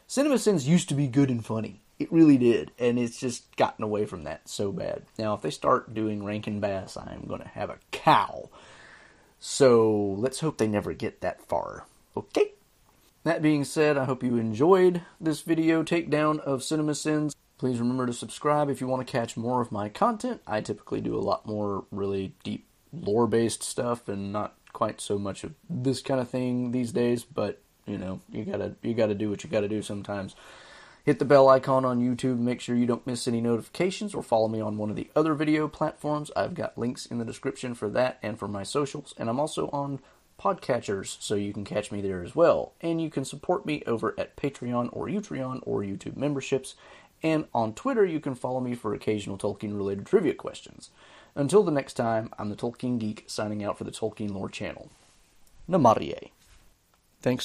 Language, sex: English, male